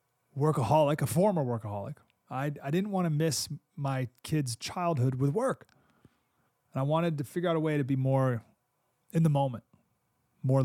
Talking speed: 170 wpm